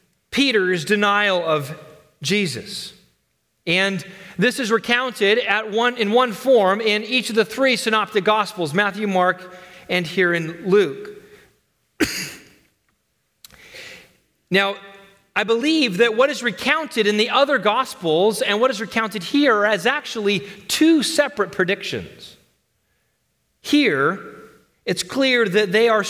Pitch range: 185-230 Hz